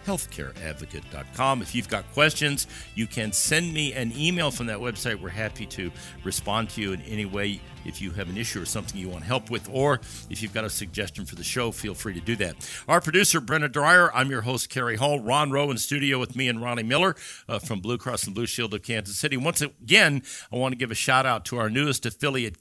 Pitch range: 110-145 Hz